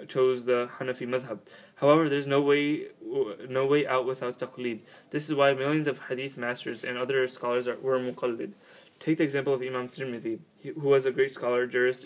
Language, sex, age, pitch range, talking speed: English, male, 20-39, 125-140 Hz, 190 wpm